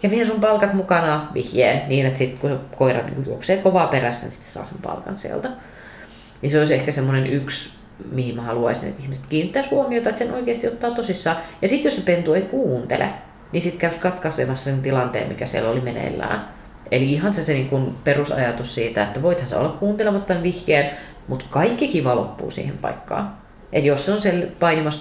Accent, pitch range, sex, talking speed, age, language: native, 130-180 Hz, female, 200 wpm, 30-49, Finnish